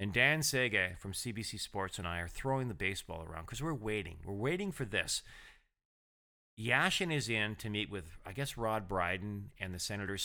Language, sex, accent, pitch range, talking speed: English, male, American, 95-135 Hz, 195 wpm